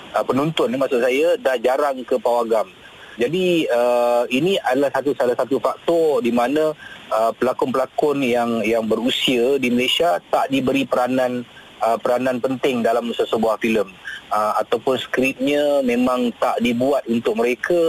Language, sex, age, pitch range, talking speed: Malay, male, 30-49, 110-135 Hz, 140 wpm